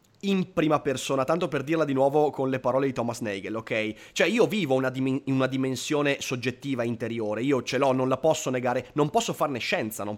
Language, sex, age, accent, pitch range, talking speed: Italian, male, 30-49, native, 125-160 Hz, 210 wpm